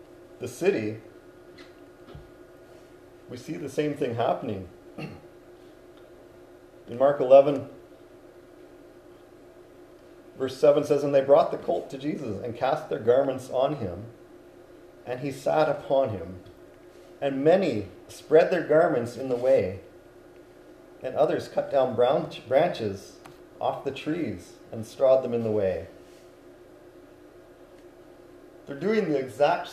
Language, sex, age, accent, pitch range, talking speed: English, male, 40-59, American, 120-150 Hz, 115 wpm